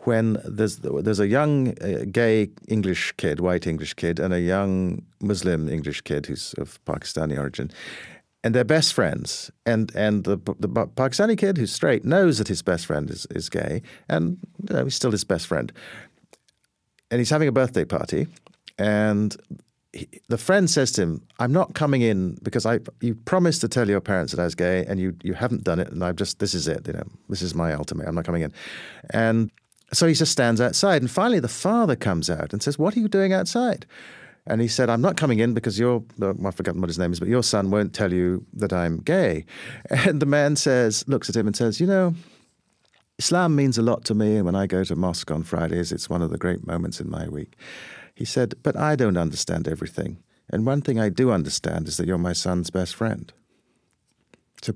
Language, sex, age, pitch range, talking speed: English, male, 50-69, 90-135 Hz, 220 wpm